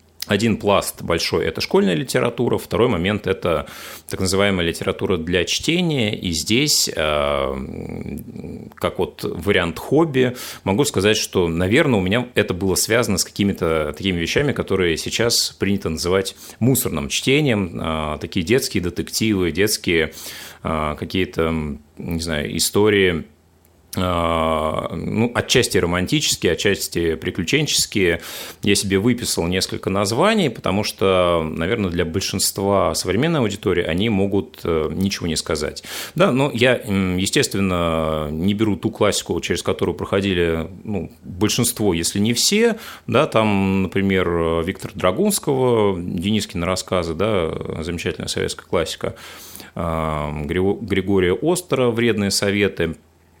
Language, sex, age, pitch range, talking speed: Russian, male, 30-49, 85-110 Hz, 115 wpm